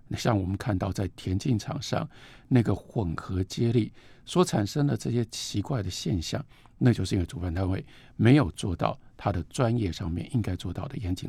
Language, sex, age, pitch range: Chinese, male, 50-69, 95-135 Hz